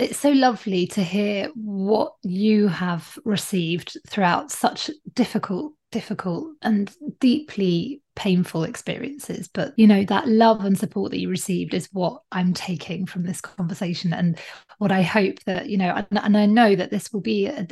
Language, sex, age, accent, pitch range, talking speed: English, female, 20-39, British, 185-230 Hz, 170 wpm